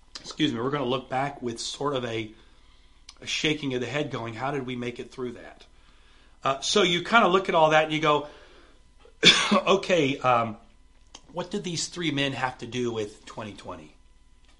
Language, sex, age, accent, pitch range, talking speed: English, male, 40-59, American, 105-150 Hz, 195 wpm